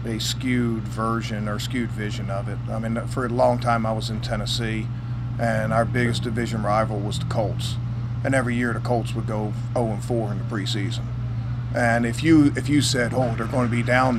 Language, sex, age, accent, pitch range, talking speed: English, male, 40-59, American, 115-125 Hz, 215 wpm